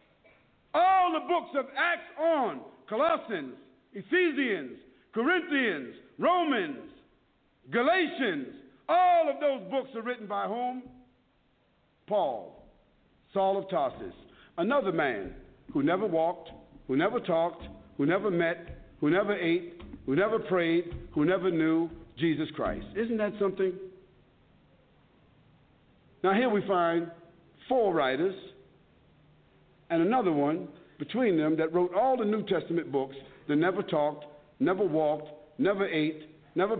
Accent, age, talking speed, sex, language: American, 50-69, 120 wpm, male, English